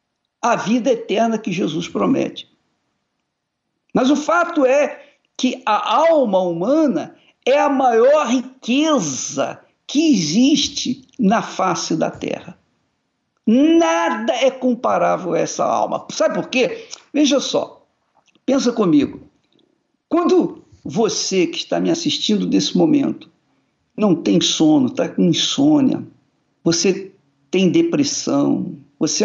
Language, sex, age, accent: Portuguese, male, 50-69, Brazilian